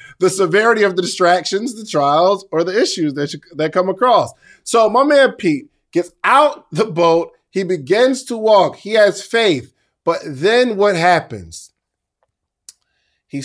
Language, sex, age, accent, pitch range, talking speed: English, male, 20-39, American, 165-270 Hz, 155 wpm